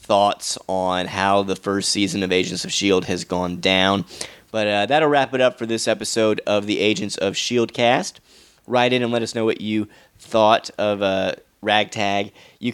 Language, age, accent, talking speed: English, 30-49, American, 200 wpm